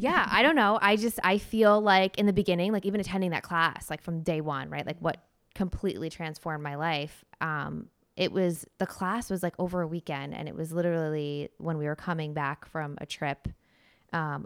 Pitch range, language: 155-185 Hz, English